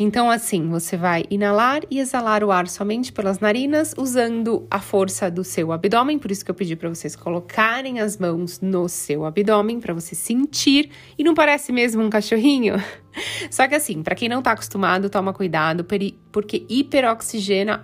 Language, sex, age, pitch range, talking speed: Portuguese, female, 20-39, 180-240 Hz, 180 wpm